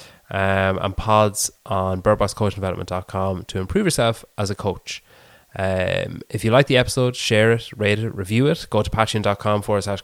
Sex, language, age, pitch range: male, English, 20-39, 95-115 Hz